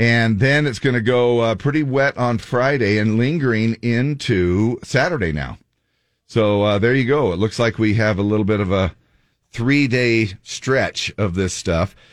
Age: 40-59